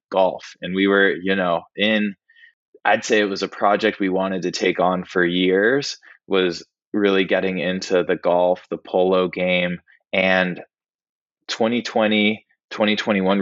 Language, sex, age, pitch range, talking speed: English, male, 20-39, 90-105 Hz, 145 wpm